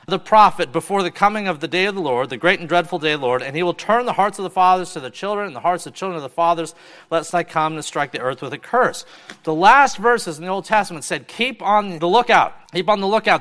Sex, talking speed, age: male, 295 wpm, 40-59